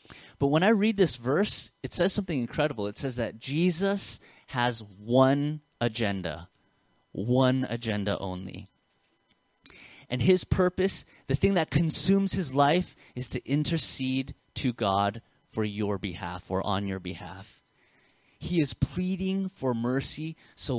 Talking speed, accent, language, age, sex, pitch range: 135 wpm, American, English, 30-49, male, 110-175 Hz